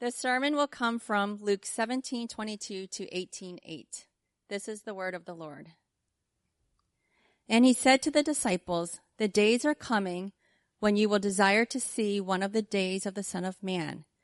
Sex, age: female, 40-59